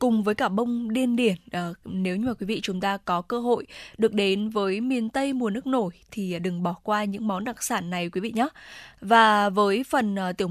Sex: female